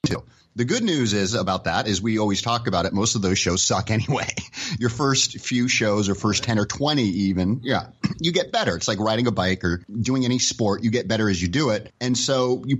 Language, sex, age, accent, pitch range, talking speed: English, male, 30-49, American, 105-130 Hz, 240 wpm